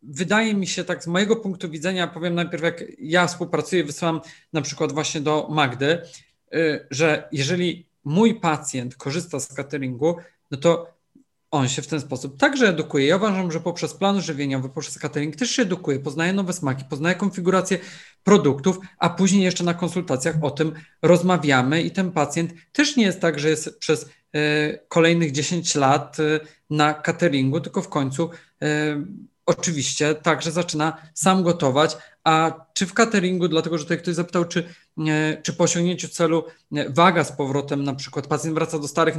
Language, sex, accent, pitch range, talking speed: Polish, male, native, 150-175 Hz, 160 wpm